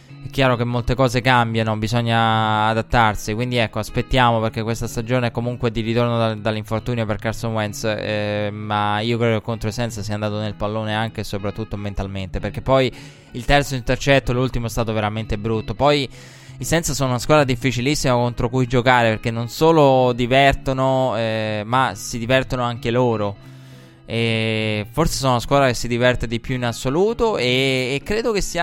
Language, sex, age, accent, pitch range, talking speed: Italian, male, 20-39, native, 110-130 Hz, 180 wpm